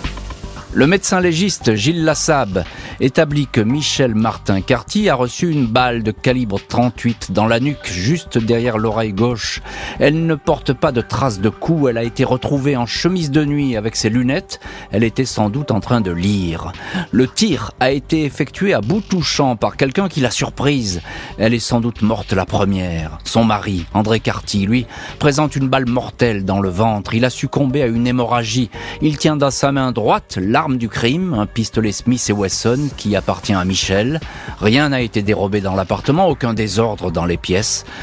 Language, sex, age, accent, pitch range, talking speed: French, male, 40-59, French, 105-145 Hz, 185 wpm